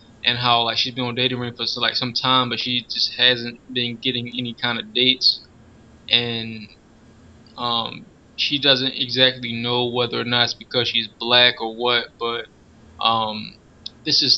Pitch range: 115-130 Hz